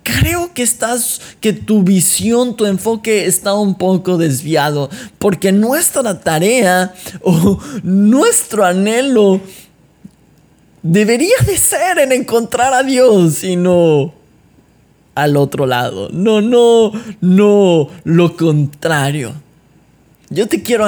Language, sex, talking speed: Spanish, male, 105 wpm